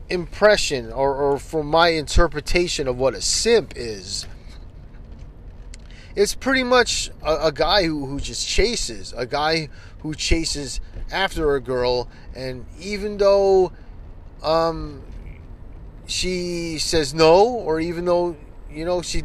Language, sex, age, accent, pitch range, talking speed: English, male, 30-49, American, 125-180 Hz, 130 wpm